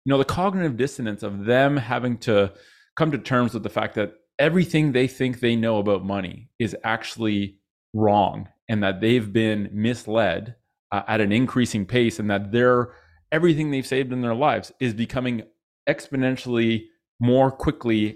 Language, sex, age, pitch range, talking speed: English, male, 30-49, 105-135 Hz, 160 wpm